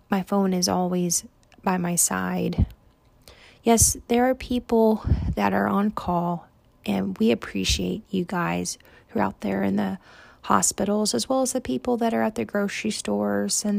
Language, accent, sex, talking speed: English, American, female, 170 wpm